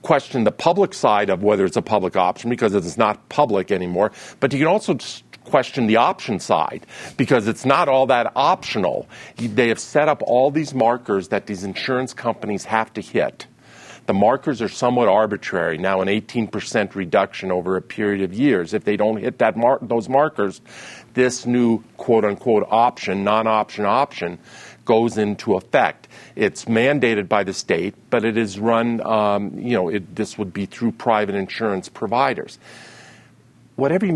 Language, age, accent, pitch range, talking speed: English, 50-69, American, 105-125 Hz, 165 wpm